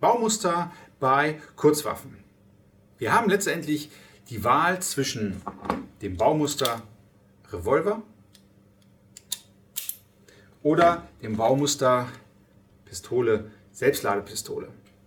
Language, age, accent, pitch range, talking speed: German, 40-59, German, 100-145 Hz, 70 wpm